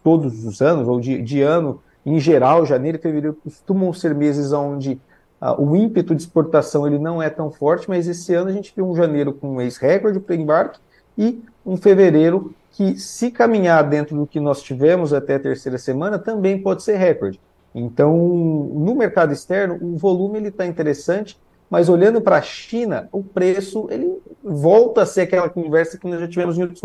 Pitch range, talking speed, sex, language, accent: 145-195 Hz, 190 wpm, male, Portuguese, Brazilian